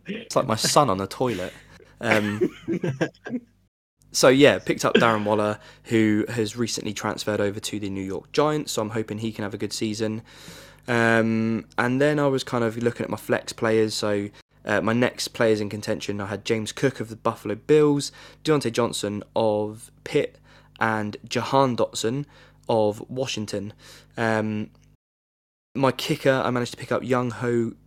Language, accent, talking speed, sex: English, British, 170 wpm, male